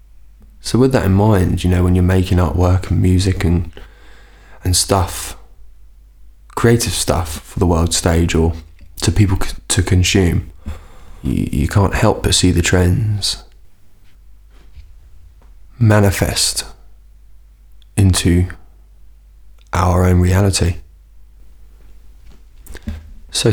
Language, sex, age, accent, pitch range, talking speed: English, male, 20-39, British, 80-95 Hz, 105 wpm